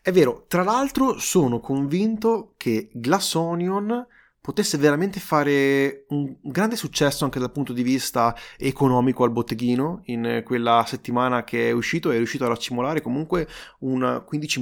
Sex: male